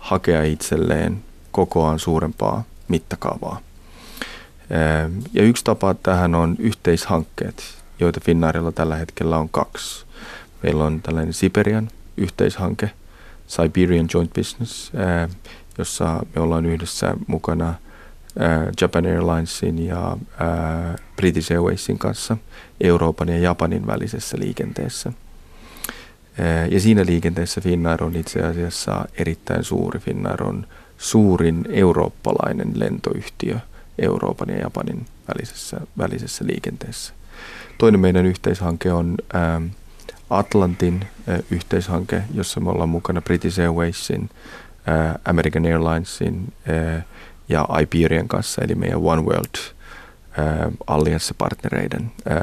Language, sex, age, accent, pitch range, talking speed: Finnish, male, 30-49, native, 80-90 Hz, 95 wpm